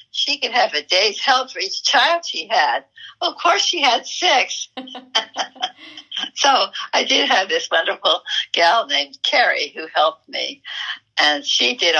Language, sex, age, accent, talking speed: English, female, 60-79, American, 155 wpm